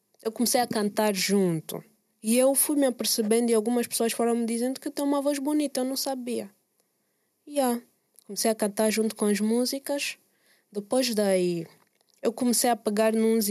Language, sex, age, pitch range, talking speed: Portuguese, female, 20-39, 195-250 Hz, 180 wpm